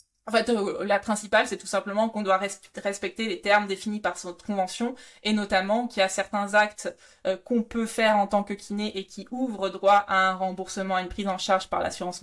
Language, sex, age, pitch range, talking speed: French, female, 20-39, 190-225 Hz, 225 wpm